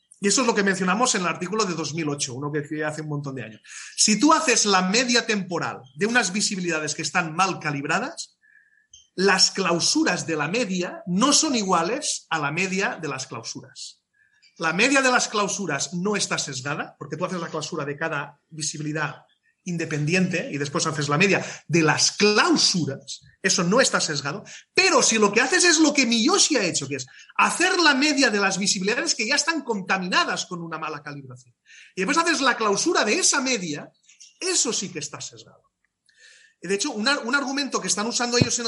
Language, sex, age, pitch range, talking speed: Spanish, male, 30-49, 160-245 Hz, 190 wpm